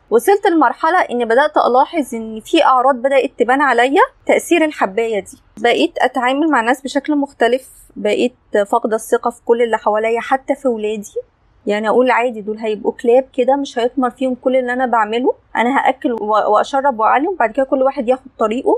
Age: 20-39